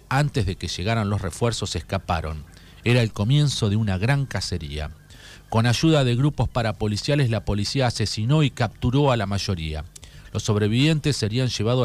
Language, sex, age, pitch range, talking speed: Spanish, male, 40-59, 95-130 Hz, 155 wpm